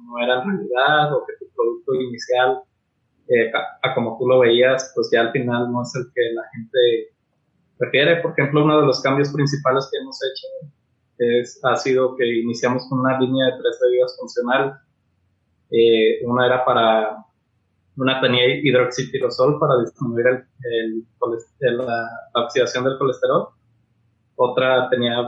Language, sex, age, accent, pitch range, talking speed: Spanish, male, 20-39, Mexican, 120-145 Hz, 155 wpm